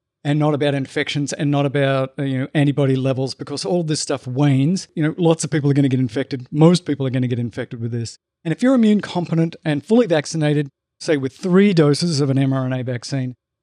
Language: English